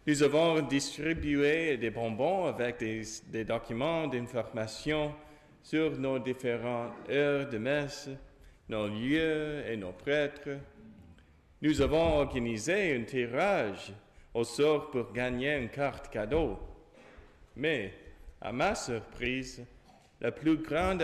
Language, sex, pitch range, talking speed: English, male, 115-150 Hz, 115 wpm